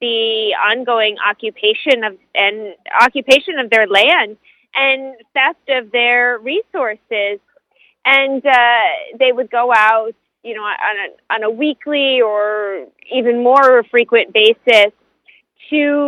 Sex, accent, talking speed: female, American, 125 wpm